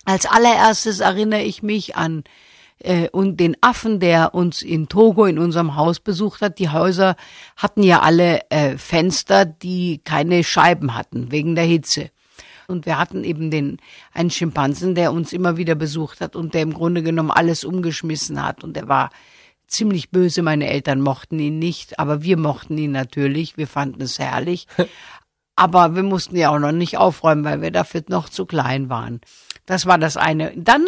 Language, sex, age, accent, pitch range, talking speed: German, female, 50-69, German, 155-190 Hz, 180 wpm